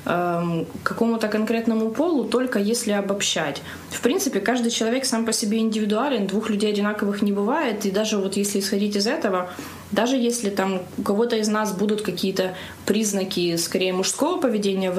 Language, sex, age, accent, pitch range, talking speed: Ukrainian, female, 20-39, native, 190-225 Hz, 165 wpm